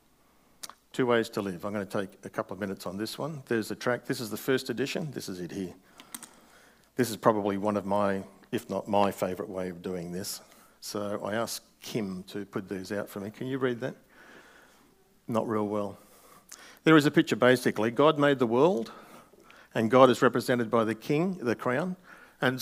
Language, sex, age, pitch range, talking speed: English, male, 50-69, 100-125 Hz, 205 wpm